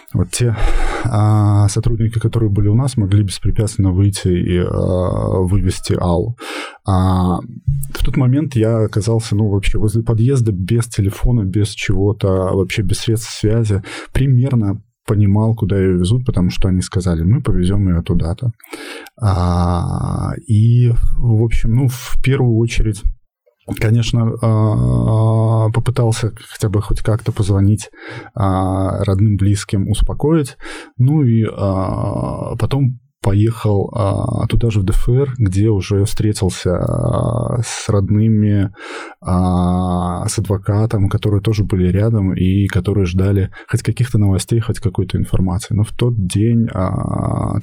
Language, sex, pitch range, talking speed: Russian, male, 95-115 Hz, 120 wpm